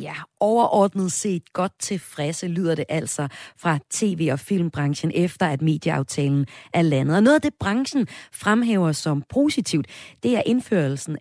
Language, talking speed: Danish, 150 wpm